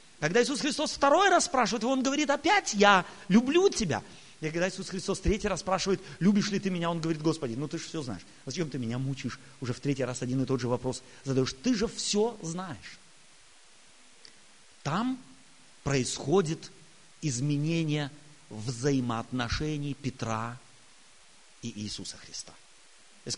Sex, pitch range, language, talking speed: male, 135-205 Hz, Russian, 155 wpm